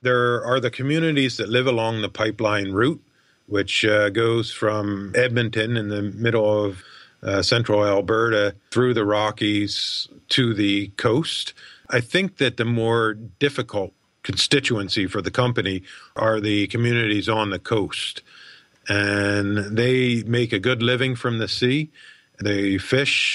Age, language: 50-69, English